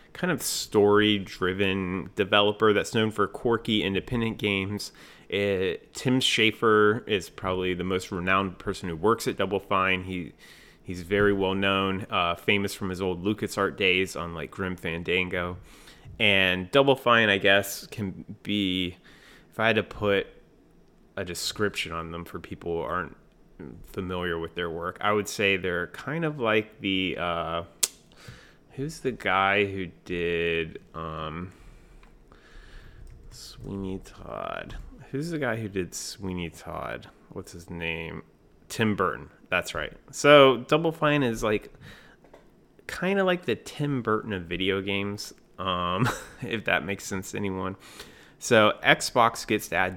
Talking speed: 140 wpm